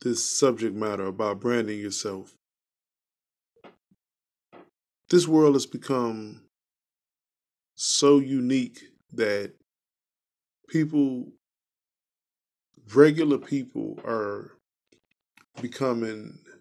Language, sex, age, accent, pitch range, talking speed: English, male, 20-39, American, 115-140 Hz, 65 wpm